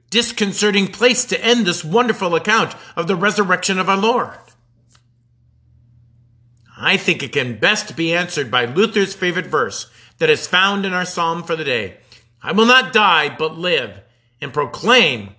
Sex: male